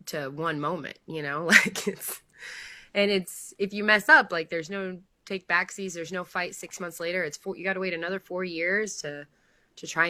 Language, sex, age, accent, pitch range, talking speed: English, female, 20-39, American, 160-200 Hz, 215 wpm